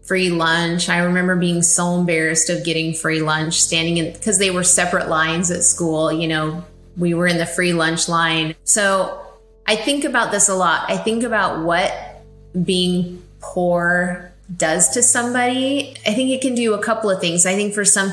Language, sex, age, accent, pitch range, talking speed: English, female, 30-49, American, 170-195 Hz, 190 wpm